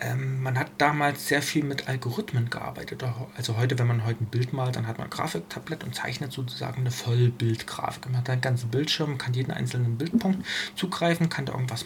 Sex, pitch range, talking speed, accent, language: male, 125-155 Hz, 195 wpm, German, German